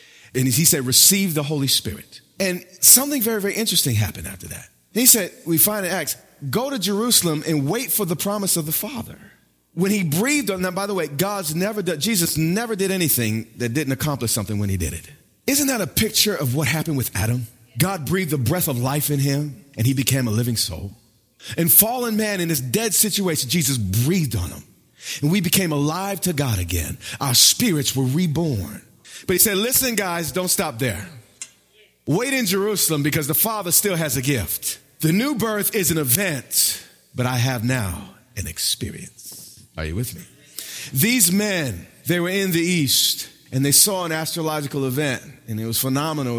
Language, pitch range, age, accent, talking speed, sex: English, 125-185 Hz, 40-59, American, 195 wpm, male